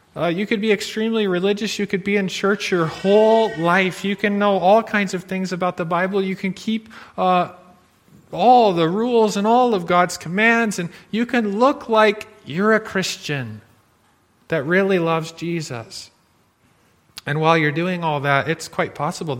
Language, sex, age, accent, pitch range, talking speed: English, male, 40-59, American, 150-205 Hz, 175 wpm